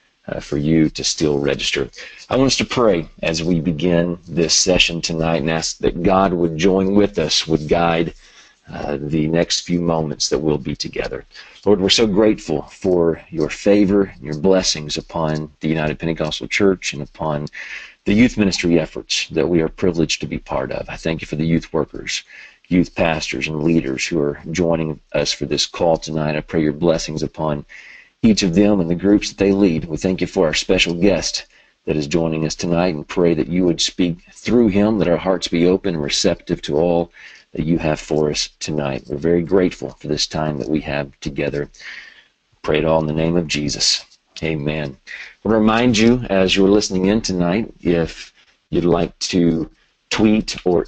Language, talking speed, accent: English, 195 wpm, American